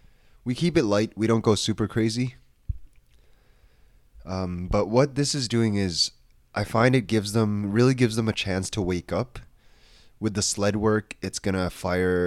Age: 20-39